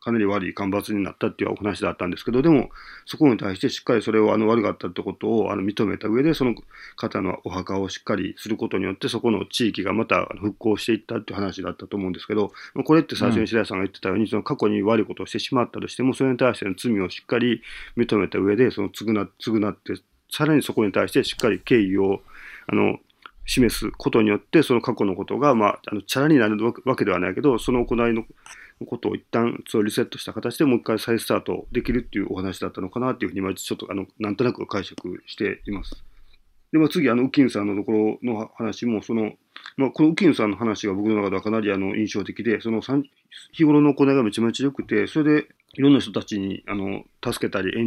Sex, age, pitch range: male, 40-59, 100-120 Hz